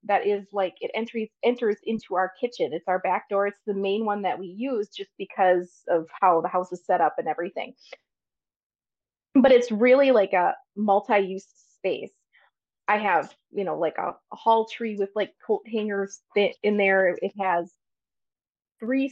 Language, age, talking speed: English, 20-39, 175 wpm